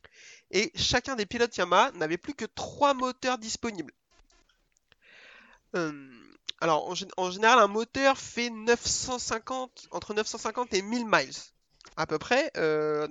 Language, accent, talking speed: French, French, 130 wpm